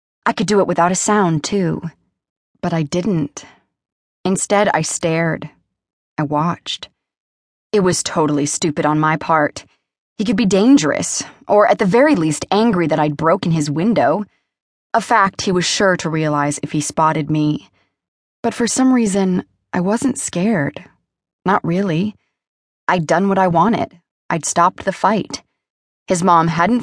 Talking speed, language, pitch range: 155 wpm, English, 155-205 Hz